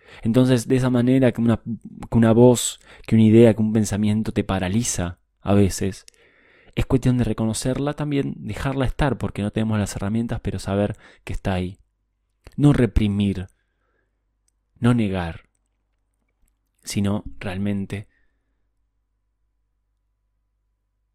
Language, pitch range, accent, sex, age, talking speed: Spanish, 100-115 Hz, Argentinian, male, 20-39, 115 wpm